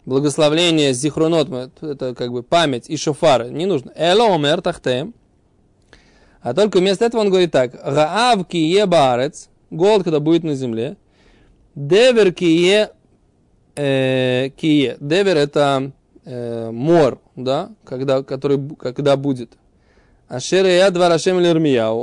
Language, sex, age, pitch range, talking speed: Russian, male, 20-39, 140-185 Hz, 100 wpm